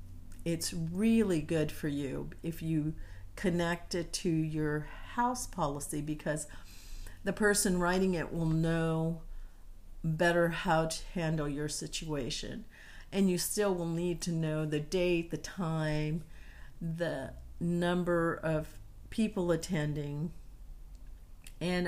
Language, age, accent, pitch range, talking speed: English, 50-69, American, 150-180 Hz, 120 wpm